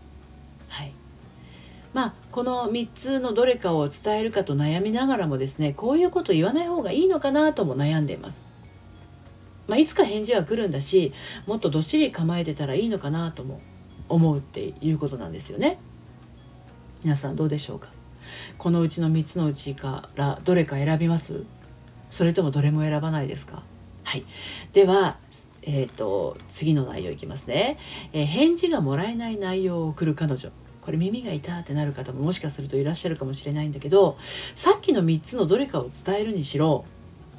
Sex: female